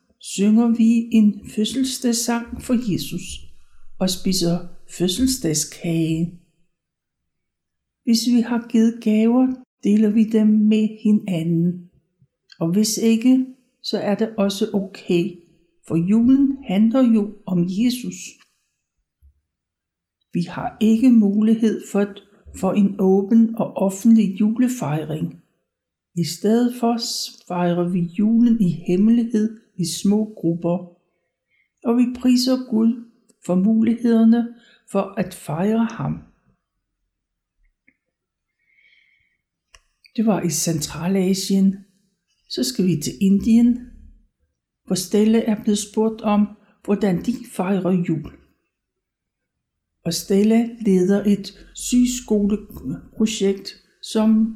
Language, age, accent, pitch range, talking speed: Danish, 60-79, native, 175-230 Hz, 95 wpm